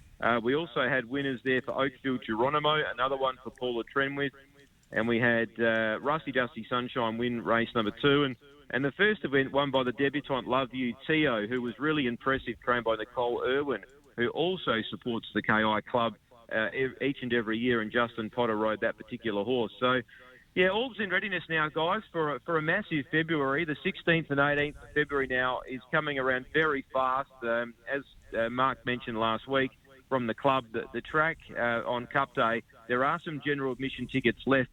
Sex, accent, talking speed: male, Australian, 190 wpm